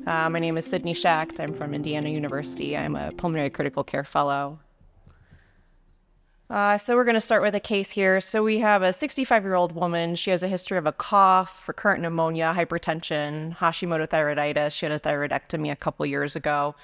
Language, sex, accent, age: English, female, American, 20-39